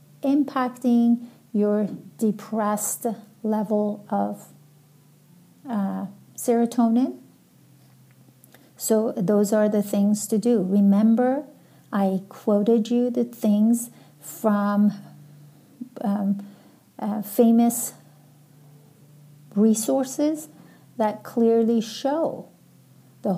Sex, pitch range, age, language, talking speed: female, 200-230 Hz, 50-69, English, 75 wpm